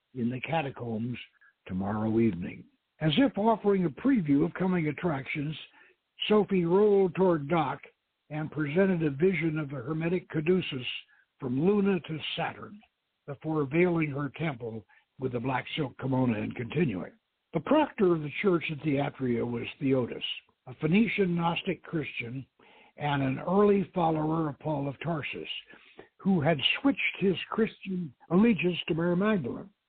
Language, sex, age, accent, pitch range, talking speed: English, male, 60-79, American, 145-195 Hz, 140 wpm